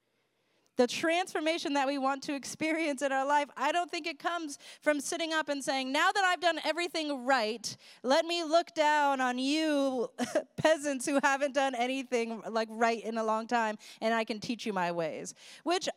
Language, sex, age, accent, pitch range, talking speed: English, female, 20-39, American, 240-330 Hz, 190 wpm